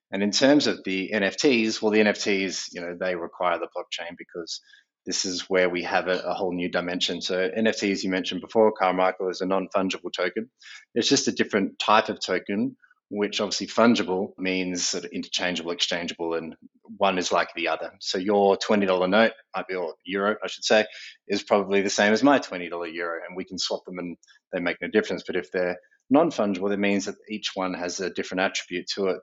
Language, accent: English, Australian